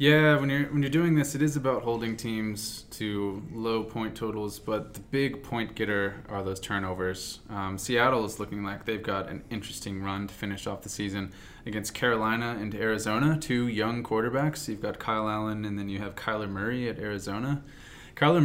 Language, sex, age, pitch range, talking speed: English, male, 20-39, 105-125 Hz, 190 wpm